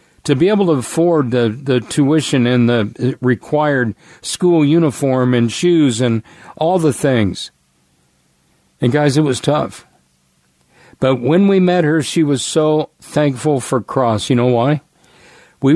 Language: English